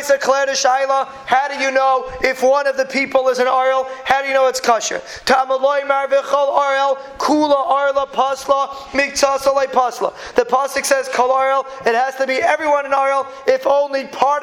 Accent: American